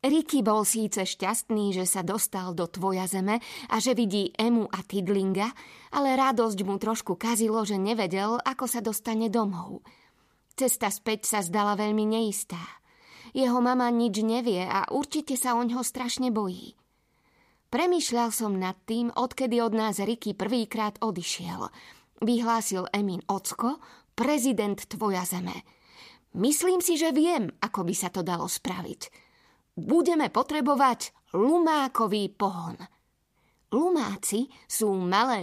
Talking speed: 130 wpm